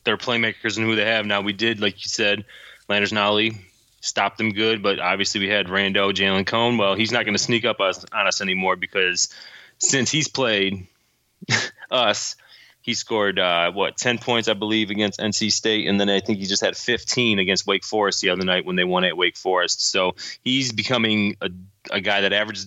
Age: 20-39